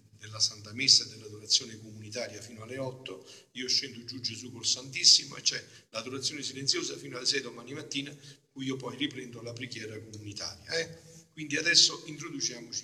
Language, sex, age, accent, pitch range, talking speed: Italian, male, 50-69, native, 115-160 Hz, 165 wpm